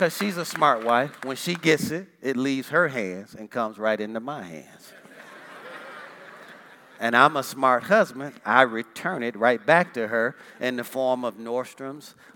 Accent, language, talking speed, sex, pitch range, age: American, English, 175 wpm, male, 120-185 Hz, 40-59